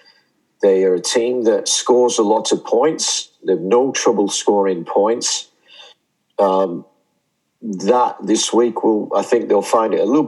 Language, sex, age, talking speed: English, male, 50-69, 165 wpm